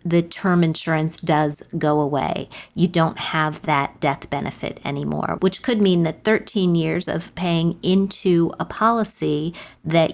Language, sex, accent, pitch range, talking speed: English, female, American, 155-185 Hz, 150 wpm